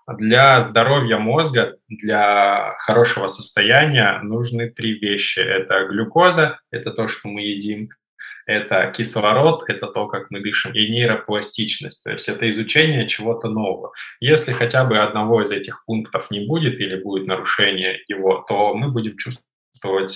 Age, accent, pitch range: 20-39, native, 105-120 Hz